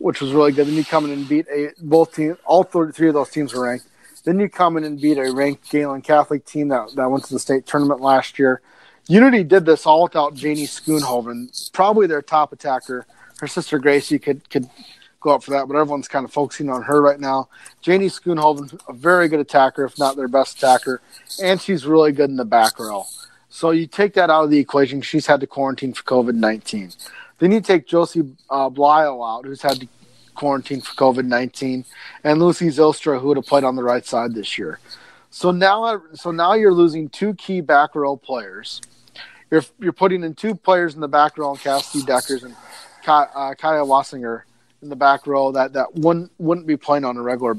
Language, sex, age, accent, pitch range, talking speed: English, male, 30-49, American, 130-160 Hz, 215 wpm